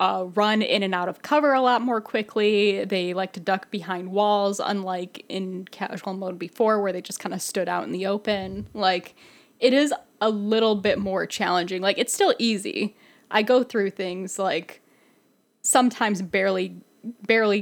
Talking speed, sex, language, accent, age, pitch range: 175 wpm, female, English, American, 10-29, 185-225 Hz